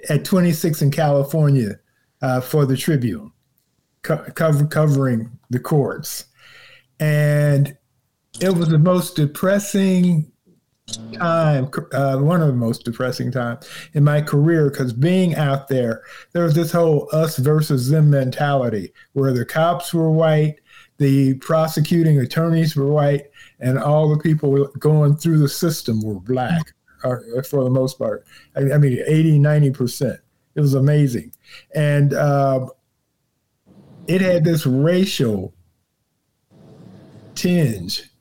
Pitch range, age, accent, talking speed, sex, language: 130-155 Hz, 50-69, American, 120 wpm, male, English